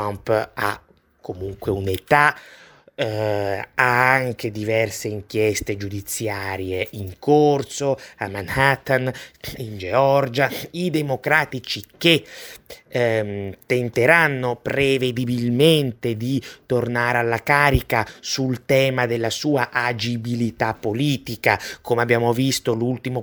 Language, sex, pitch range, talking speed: Italian, male, 110-135 Hz, 90 wpm